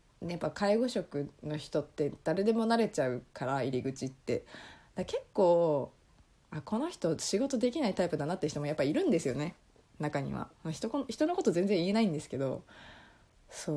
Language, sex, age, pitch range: Japanese, female, 20-39, 145-220 Hz